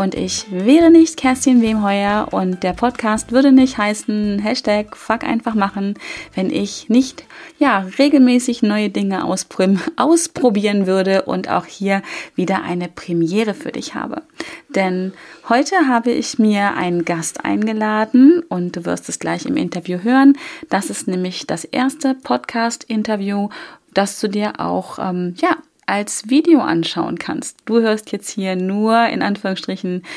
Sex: female